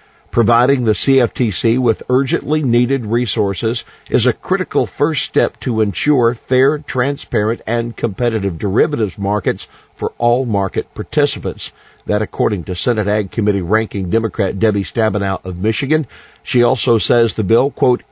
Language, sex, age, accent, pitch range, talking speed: English, male, 50-69, American, 105-125 Hz, 140 wpm